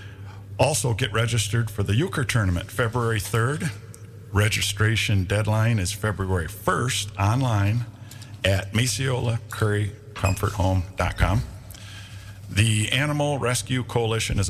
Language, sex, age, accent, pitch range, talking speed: English, male, 50-69, American, 95-110 Hz, 90 wpm